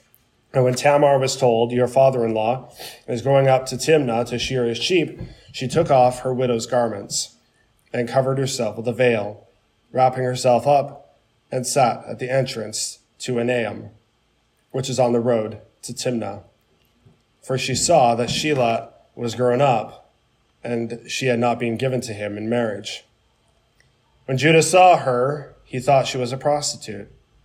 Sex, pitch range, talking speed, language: male, 115-130 Hz, 160 wpm, English